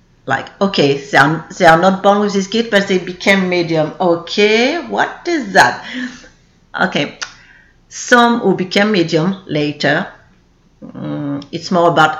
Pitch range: 160-200 Hz